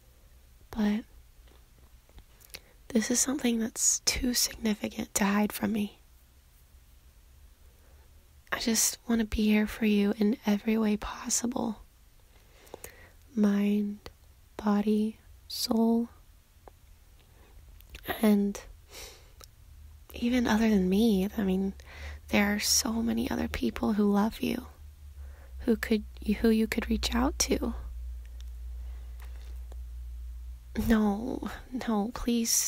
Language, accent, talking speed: English, American, 95 wpm